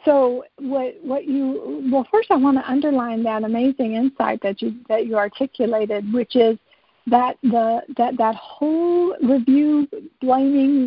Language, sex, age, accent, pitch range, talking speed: English, female, 50-69, American, 225-265 Hz, 145 wpm